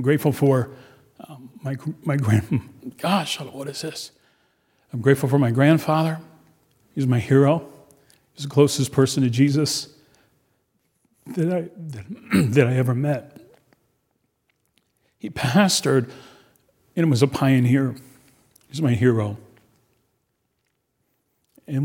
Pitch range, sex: 115-140 Hz, male